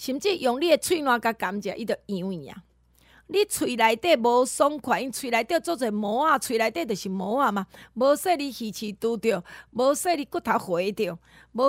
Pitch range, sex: 215-310 Hz, female